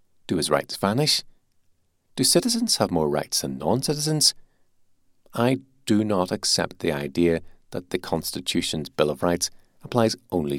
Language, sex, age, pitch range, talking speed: English, male, 40-59, 80-110 Hz, 140 wpm